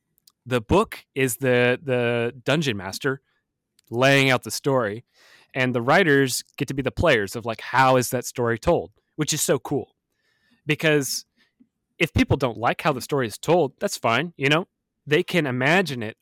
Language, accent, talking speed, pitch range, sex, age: English, American, 180 wpm, 110-145 Hz, male, 30-49